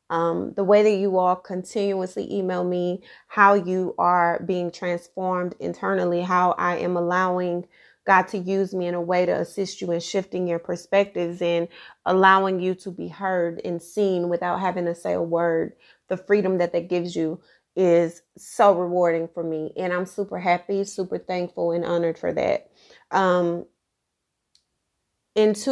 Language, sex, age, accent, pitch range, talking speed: English, female, 30-49, American, 170-190 Hz, 160 wpm